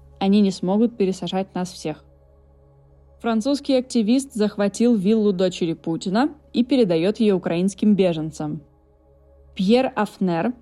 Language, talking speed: Russian, 105 wpm